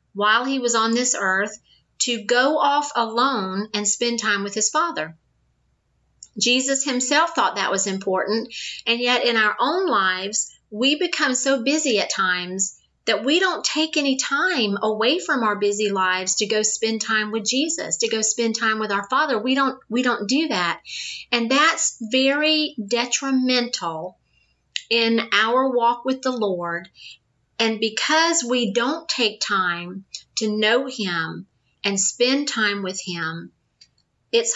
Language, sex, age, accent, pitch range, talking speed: English, female, 40-59, American, 195-265 Hz, 155 wpm